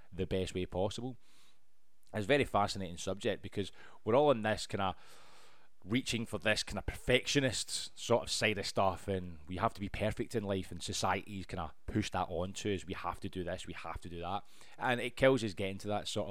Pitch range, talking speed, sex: 95-120 Hz, 230 wpm, male